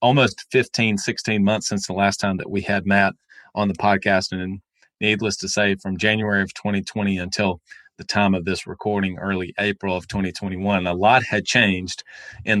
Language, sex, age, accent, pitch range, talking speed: English, male, 40-59, American, 95-110 Hz, 180 wpm